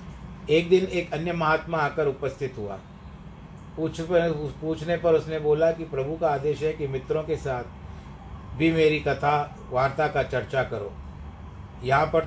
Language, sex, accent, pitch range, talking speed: Hindi, male, native, 125-155 Hz, 155 wpm